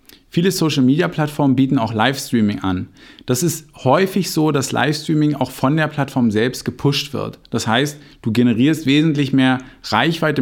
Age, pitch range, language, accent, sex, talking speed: 50-69, 115-150 Hz, German, German, male, 150 wpm